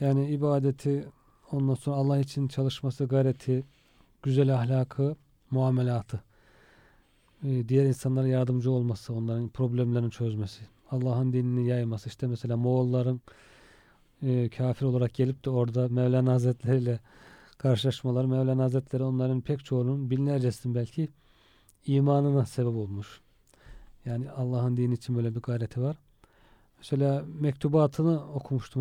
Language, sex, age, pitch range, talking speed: Turkish, male, 40-59, 120-140 Hz, 110 wpm